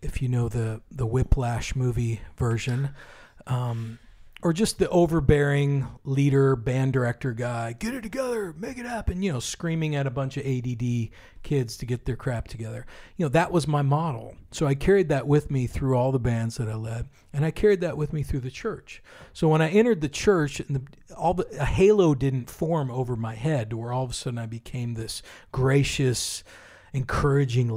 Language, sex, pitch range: English, male, 115-145 Hz